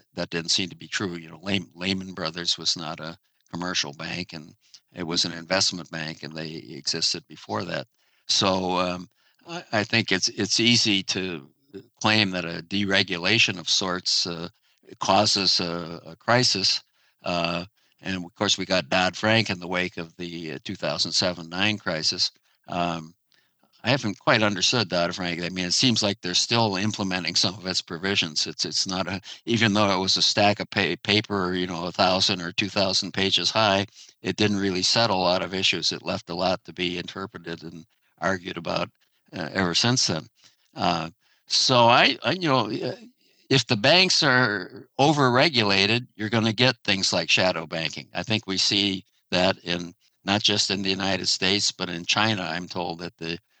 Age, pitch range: 60-79, 85-105 Hz